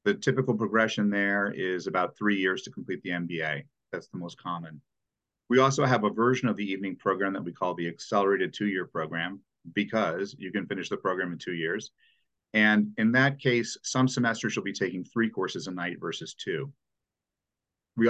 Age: 40-59